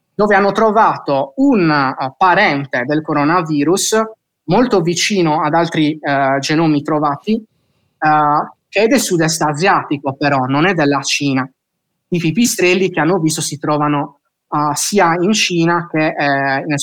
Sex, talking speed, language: male, 145 wpm, Italian